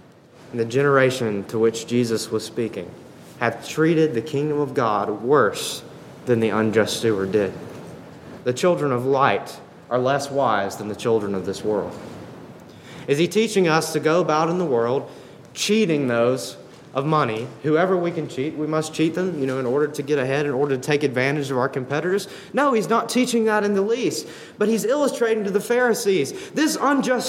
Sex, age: male, 30-49